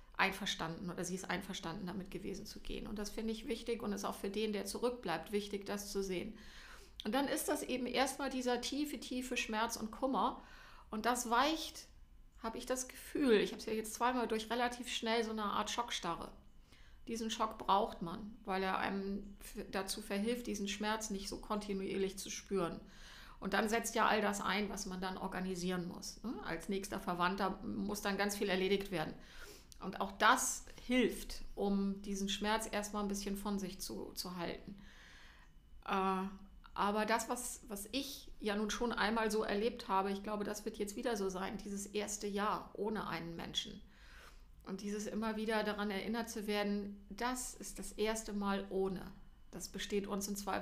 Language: German